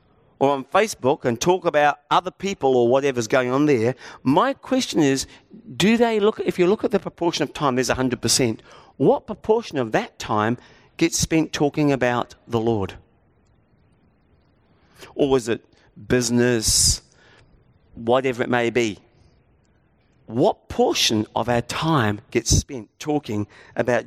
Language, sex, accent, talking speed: English, male, British, 140 wpm